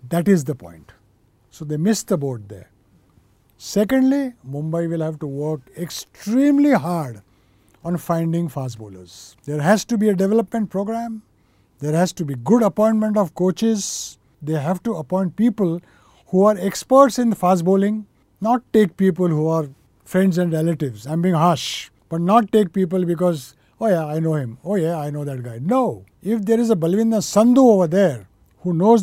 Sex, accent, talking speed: male, Indian, 180 wpm